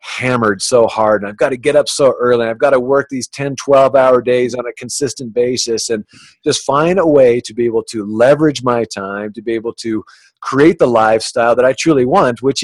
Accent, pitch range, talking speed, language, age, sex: American, 115-135 Hz, 230 wpm, English, 40-59, male